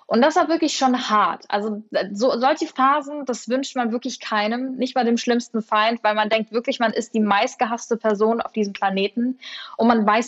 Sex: female